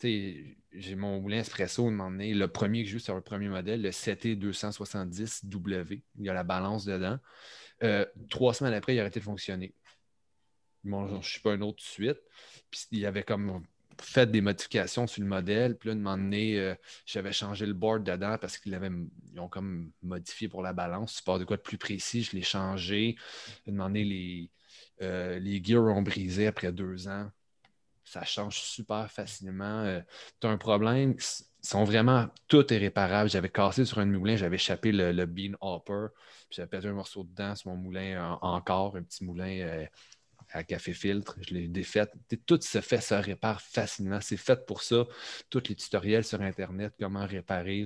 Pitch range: 95-110 Hz